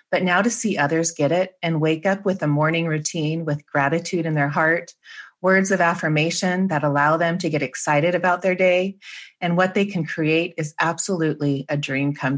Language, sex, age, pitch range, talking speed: English, female, 30-49, 155-190 Hz, 200 wpm